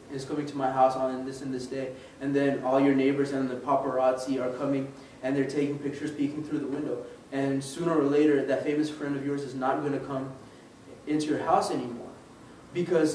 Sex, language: male, English